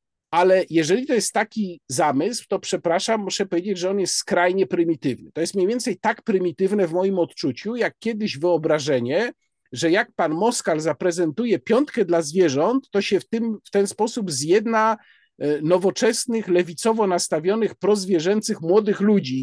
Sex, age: male, 50-69